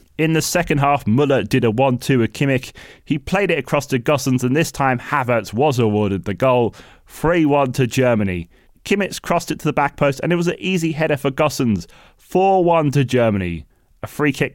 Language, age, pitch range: English, 20-39, 120-155 Hz